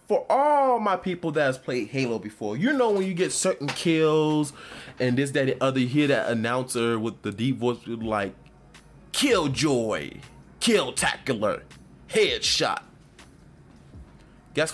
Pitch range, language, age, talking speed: 110-150 Hz, English, 20-39, 145 wpm